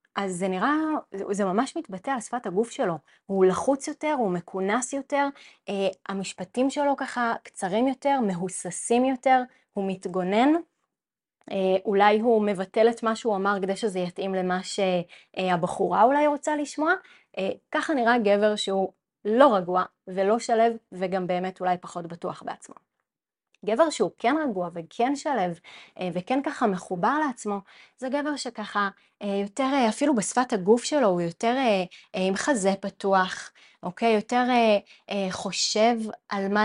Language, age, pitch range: Hebrew, 20-39, 190-255 Hz